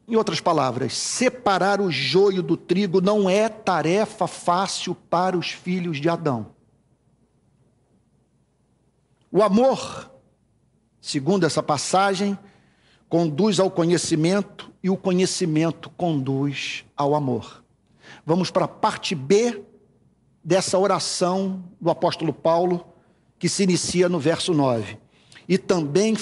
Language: Portuguese